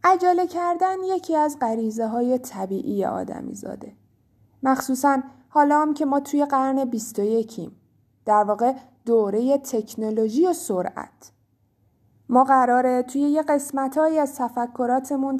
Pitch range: 220-305 Hz